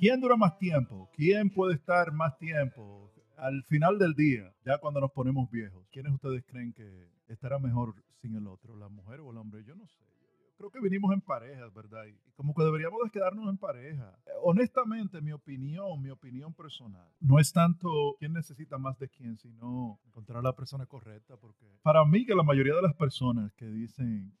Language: Spanish